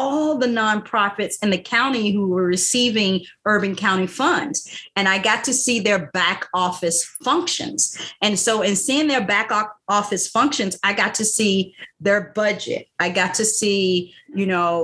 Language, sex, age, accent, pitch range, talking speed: English, female, 40-59, American, 180-220 Hz, 165 wpm